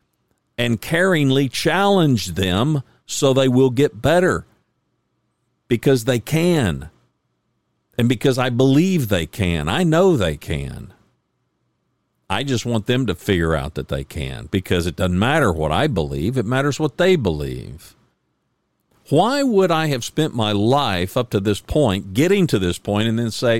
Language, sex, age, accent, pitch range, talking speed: English, male, 50-69, American, 95-145 Hz, 160 wpm